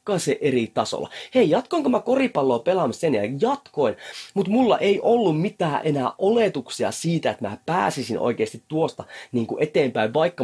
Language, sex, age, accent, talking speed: Finnish, male, 30-49, native, 155 wpm